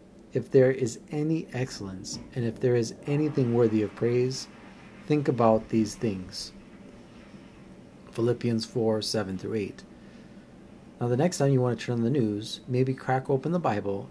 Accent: American